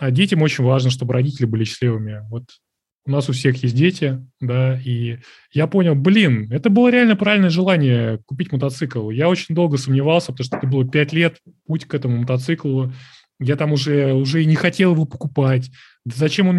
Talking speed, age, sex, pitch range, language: 190 wpm, 20-39, male, 130-165 Hz, Russian